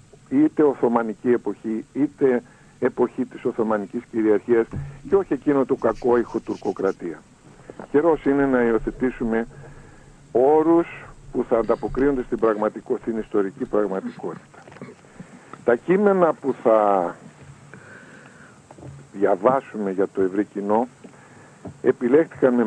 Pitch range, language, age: 115-155 Hz, Greek, 60-79